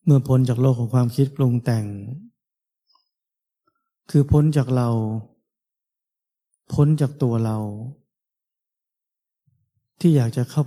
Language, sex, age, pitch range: Thai, male, 20-39, 115-145 Hz